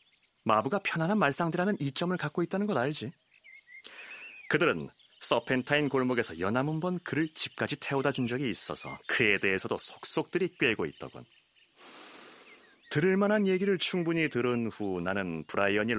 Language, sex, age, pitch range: Korean, male, 30-49, 115-170 Hz